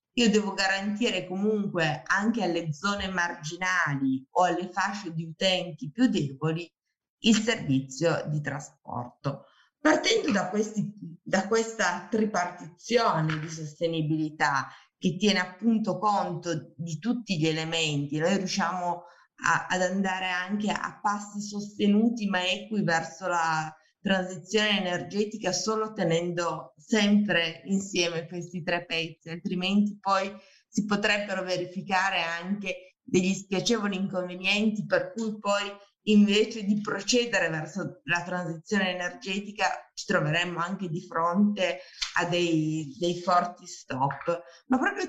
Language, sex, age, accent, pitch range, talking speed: Italian, female, 20-39, native, 170-205 Hz, 115 wpm